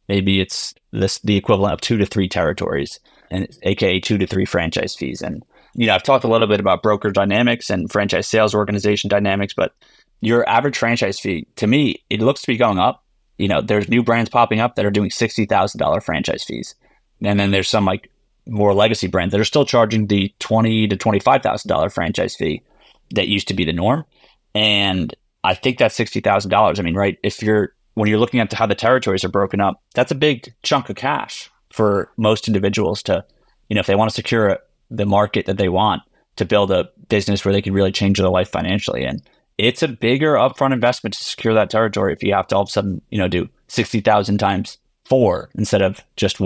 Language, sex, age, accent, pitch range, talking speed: English, male, 30-49, American, 100-115 Hz, 220 wpm